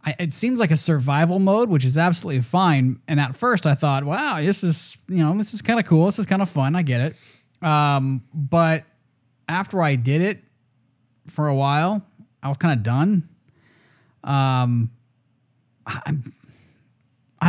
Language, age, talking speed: English, 20-39, 165 wpm